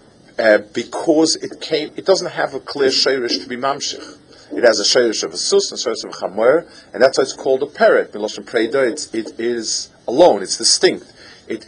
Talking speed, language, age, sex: 200 wpm, English, 40-59, male